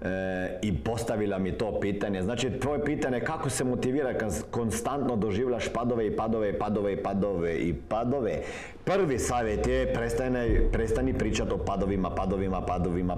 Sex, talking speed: male, 160 wpm